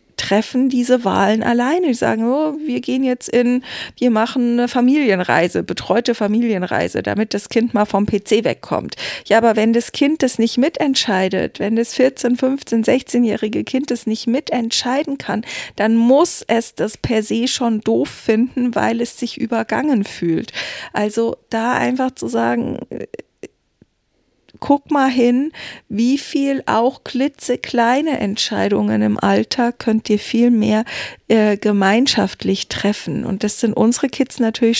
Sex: female